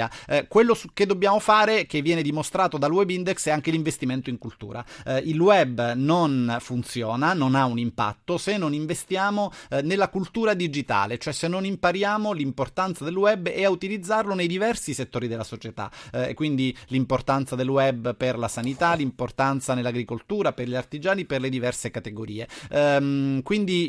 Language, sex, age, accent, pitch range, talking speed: Italian, male, 30-49, native, 130-185 Hz, 170 wpm